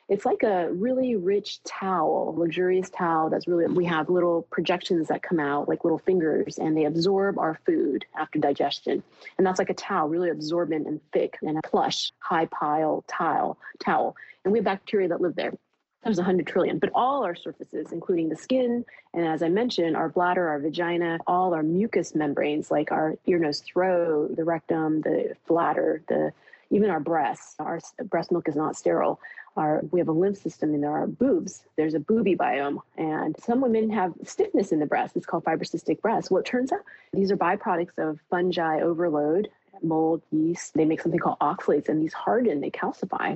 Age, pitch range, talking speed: 30-49, 155-195 Hz, 195 wpm